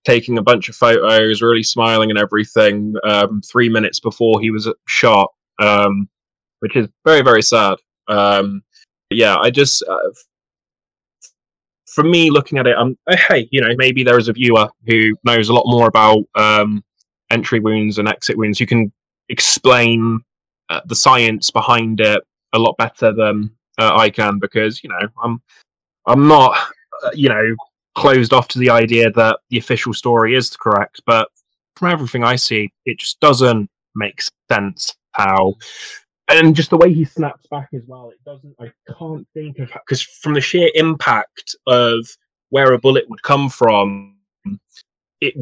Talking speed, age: 170 wpm, 10-29